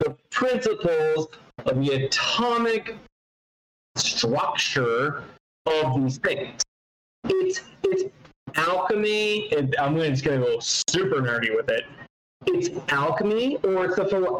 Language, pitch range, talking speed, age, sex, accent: English, 135-195 Hz, 115 wpm, 30-49, male, American